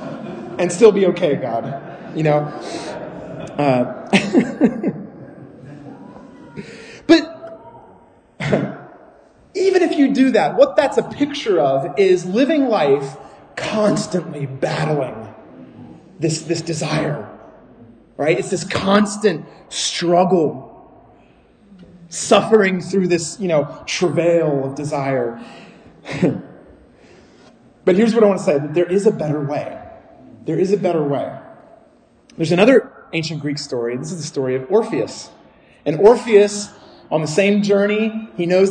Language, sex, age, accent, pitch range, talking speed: English, male, 30-49, American, 150-205 Hz, 120 wpm